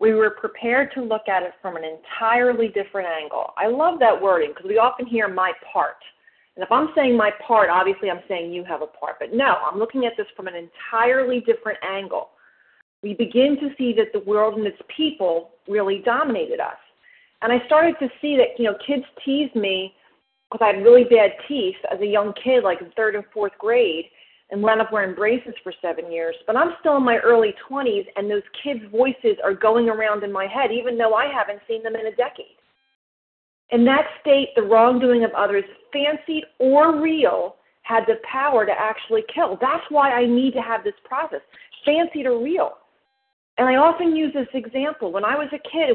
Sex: female